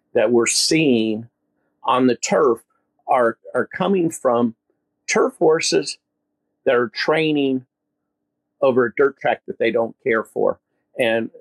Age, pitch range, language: 50-69, 110-150 Hz, English